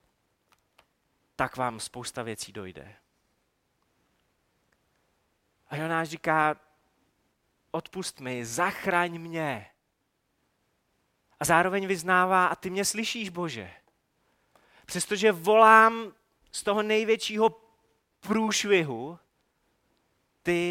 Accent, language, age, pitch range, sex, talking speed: native, Czech, 30-49, 130-200 Hz, male, 80 wpm